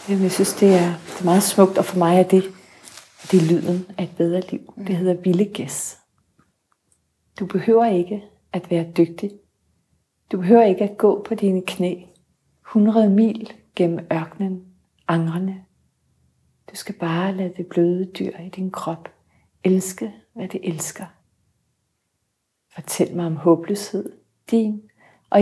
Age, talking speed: 40-59, 155 wpm